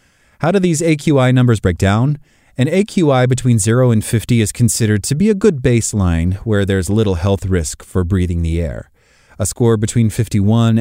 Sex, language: male, English